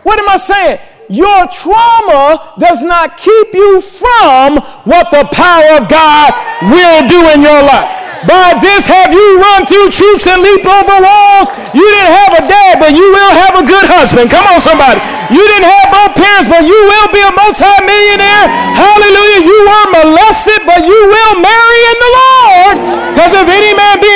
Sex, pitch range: male, 325-405 Hz